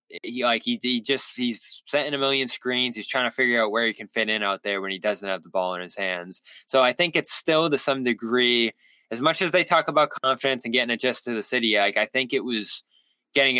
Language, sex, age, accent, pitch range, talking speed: English, male, 10-29, American, 105-135 Hz, 255 wpm